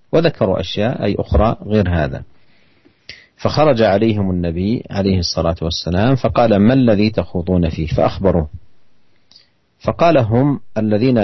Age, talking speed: 50-69, 110 wpm